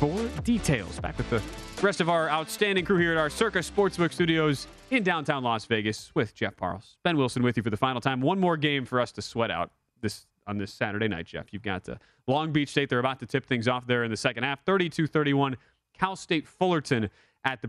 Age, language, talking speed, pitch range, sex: 30-49, English, 235 wpm, 115-145 Hz, male